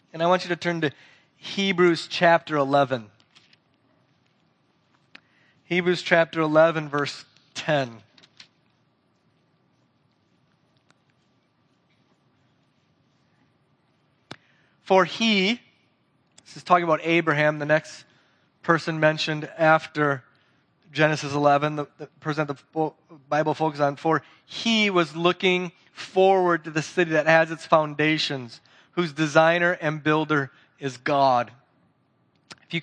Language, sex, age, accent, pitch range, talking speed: English, male, 30-49, American, 150-180 Hz, 100 wpm